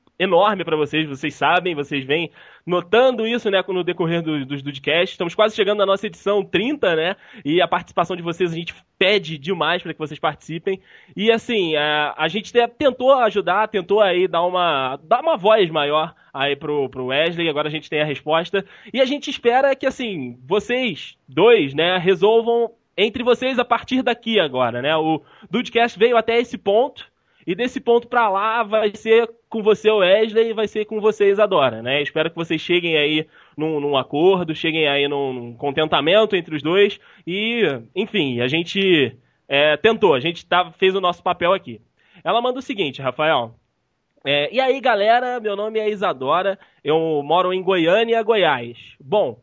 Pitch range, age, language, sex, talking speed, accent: 155-225 Hz, 20-39, Portuguese, male, 180 wpm, Brazilian